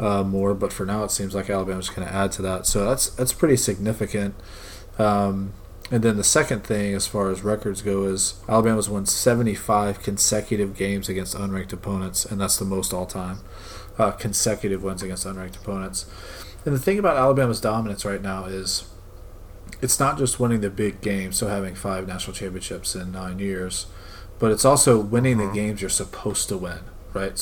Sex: male